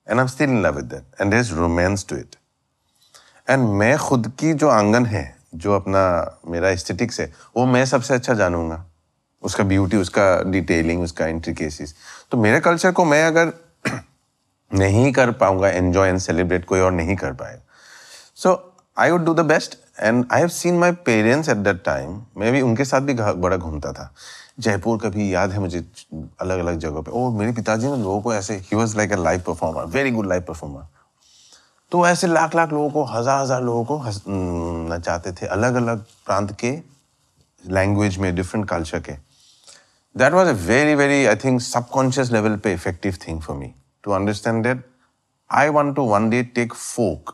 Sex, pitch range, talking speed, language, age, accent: male, 90-130 Hz, 185 wpm, Hindi, 30-49, native